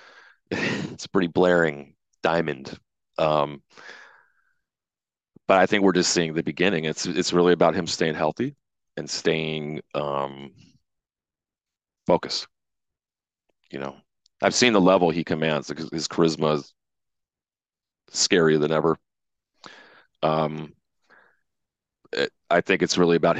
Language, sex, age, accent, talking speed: English, male, 30-49, American, 120 wpm